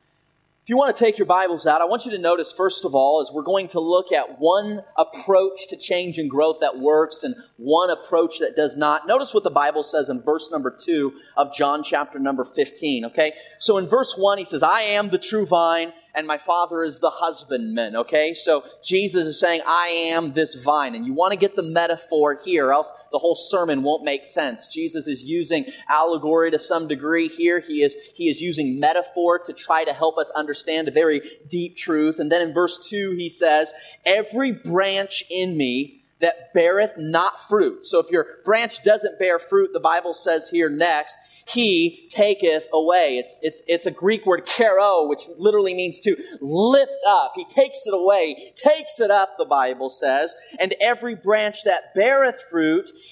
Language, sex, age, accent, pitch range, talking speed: English, male, 30-49, American, 160-225 Hz, 200 wpm